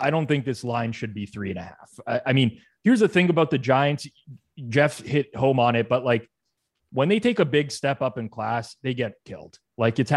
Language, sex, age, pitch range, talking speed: English, male, 20-39, 115-145 Hz, 235 wpm